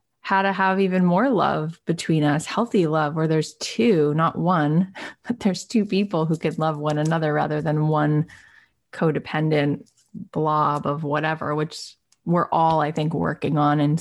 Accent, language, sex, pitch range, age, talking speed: American, English, female, 150-180 Hz, 20-39, 165 wpm